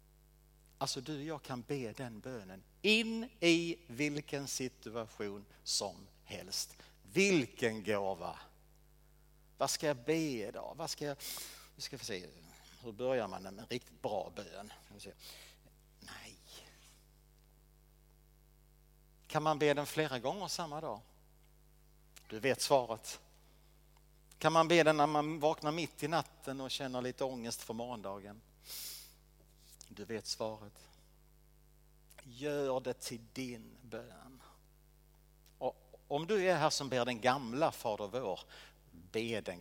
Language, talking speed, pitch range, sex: Swedish, 130 wpm, 125-155 Hz, male